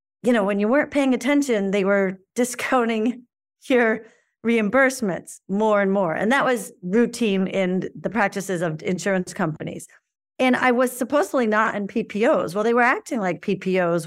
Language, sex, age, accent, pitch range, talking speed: English, female, 40-59, American, 185-240 Hz, 160 wpm